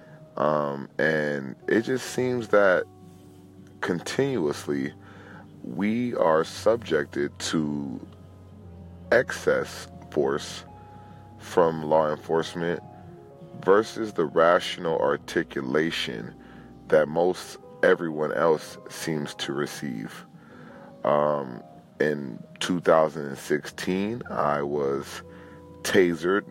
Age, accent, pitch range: 30-49, American, 75-95 Hz